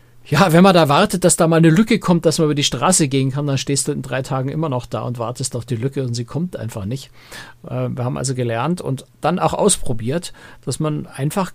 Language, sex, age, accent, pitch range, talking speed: German, male, 60-79, German, 120-150 Hz, 250 wpm